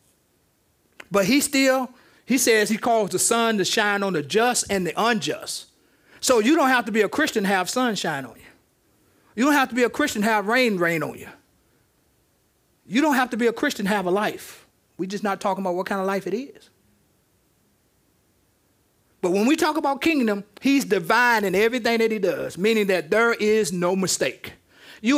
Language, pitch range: English, 180-250 Hz